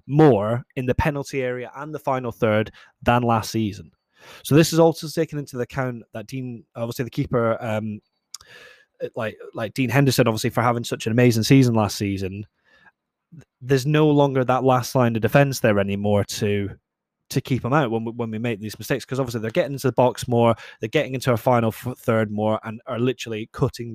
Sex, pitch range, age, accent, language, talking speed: male, 115-140 Hz, 20-39, British, English, 200 wpm